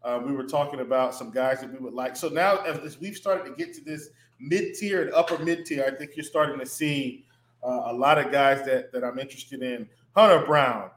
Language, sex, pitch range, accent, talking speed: English, male, 135-185 Hz, American, 235 wpm